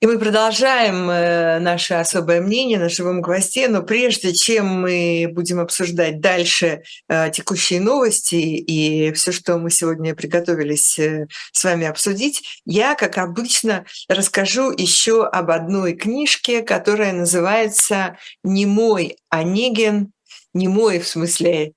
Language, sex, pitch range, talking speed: Russian, female, 165-205 Hz, 125 wpm